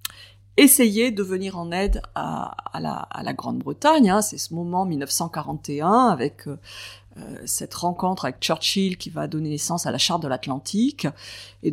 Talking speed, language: 165 wpm, French